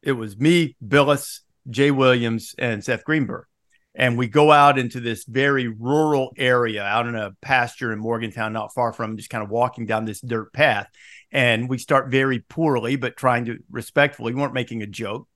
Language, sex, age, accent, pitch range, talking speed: English, male, 50-69, American, 115-155 Hz, 190 wpm